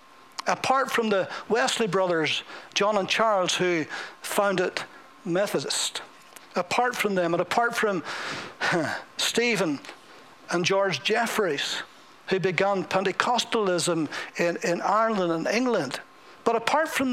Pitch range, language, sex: 165-215 Hz, English, male